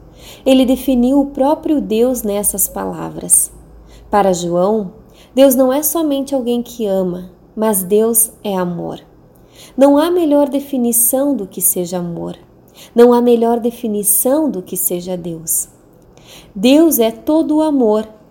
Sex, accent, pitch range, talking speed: female, Brazilian, 195-265 Hz, 135 wpm